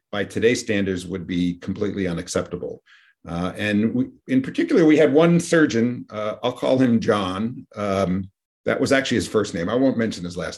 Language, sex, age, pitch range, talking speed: English, male, 50-69, 110-145 Hz, 180 wpm